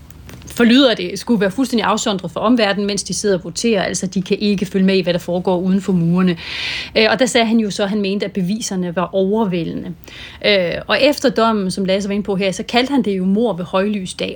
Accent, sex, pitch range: native, female, 190-225 Hz